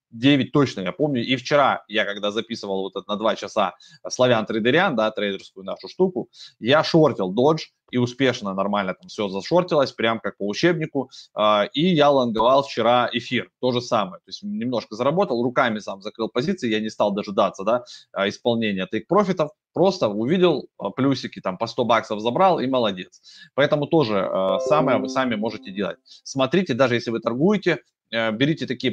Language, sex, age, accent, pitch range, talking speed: Russian, male, 20-39, native, 110-150 Hz, 165 wpm